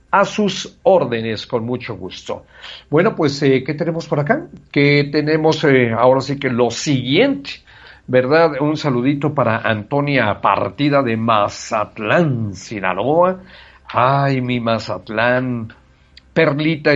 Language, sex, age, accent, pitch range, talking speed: English, male, 50-69, Mexican, 120-155 Hz, 120 wpm